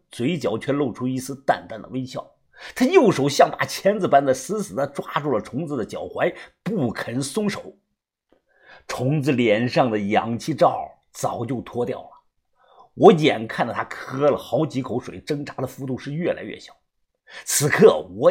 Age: 50-69